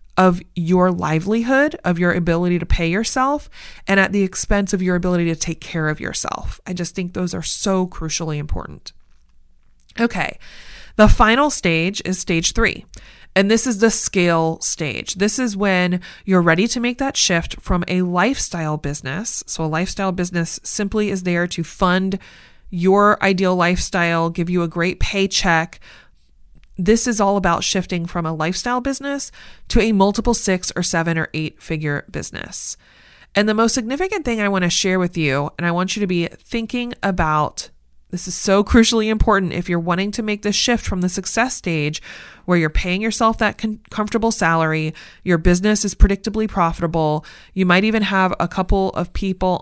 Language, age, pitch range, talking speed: English, 30-49, 170-210 Hz, 175 wpm